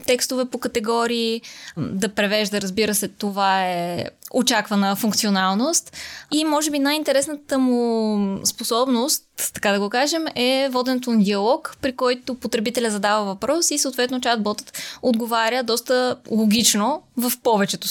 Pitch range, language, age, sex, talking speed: 220-265 Hz, Bulgarian, 20-39, female, 130 wpm